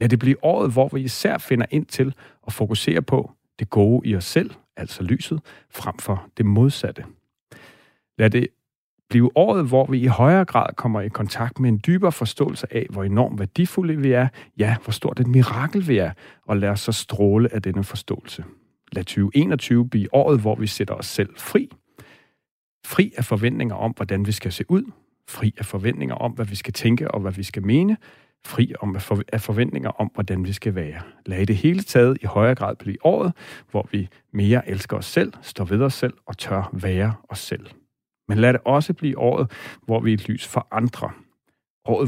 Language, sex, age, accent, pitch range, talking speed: Danish, male, 40-59, native, 105-130 Hz, 200 wpm